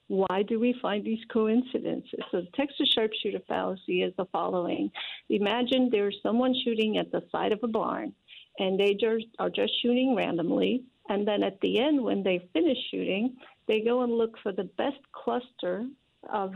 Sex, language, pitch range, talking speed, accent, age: female, English, 200-255 Hz, 180 wpm, American, 50-69